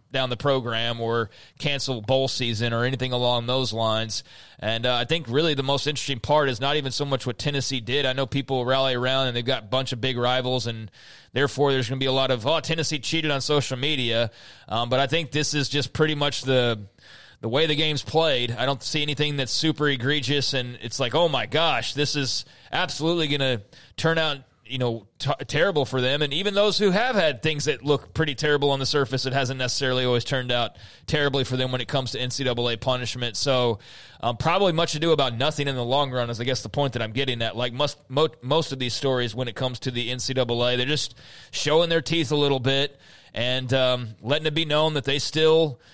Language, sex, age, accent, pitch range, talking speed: English, male, 20-39, American, 125-145 Hz, 230 wpm